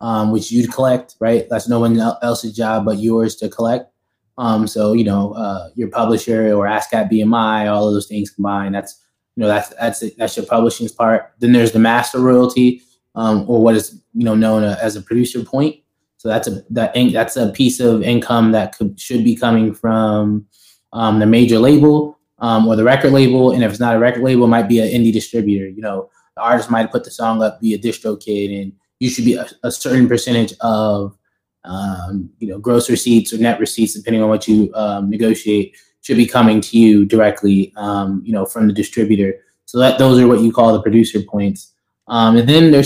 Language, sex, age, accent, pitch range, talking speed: English, male, 20-39, American, 105-120 Hz, 215 wpm